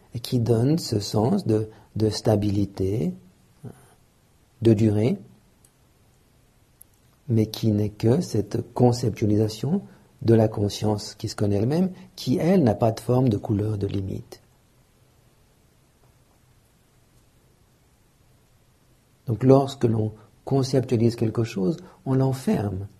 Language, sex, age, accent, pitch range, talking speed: English, male, 50-69, French, 105-125 Hz, 105 wpm